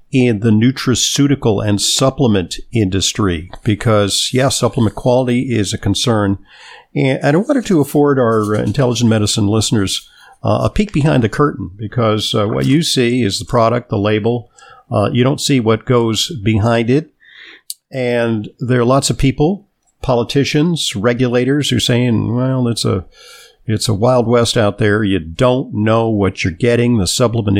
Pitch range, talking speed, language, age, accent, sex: 105-125 Hz, 160 wpm, English, 50-69, American, male